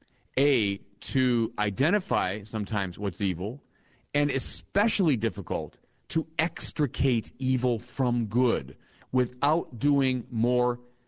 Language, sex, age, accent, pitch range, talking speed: English, male, 40-59, American, 115-160 Hz, 90 wpm